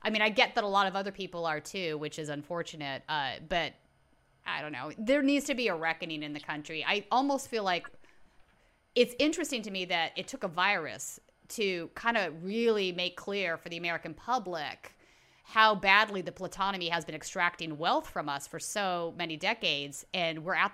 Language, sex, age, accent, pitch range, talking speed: English, female, 30-49, American, 165-220 Hz, 200 wpm